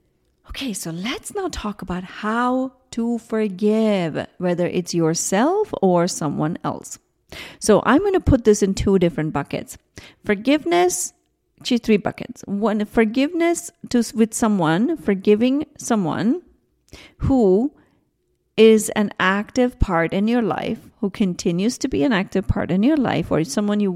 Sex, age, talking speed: female, 40-59, 145 wpm